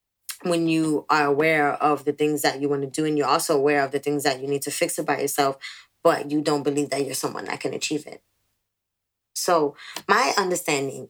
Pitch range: 140-170 Hz